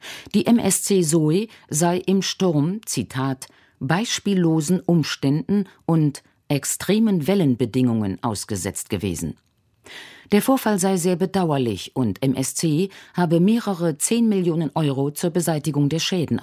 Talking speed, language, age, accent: 110 wpm, German, 50-69, German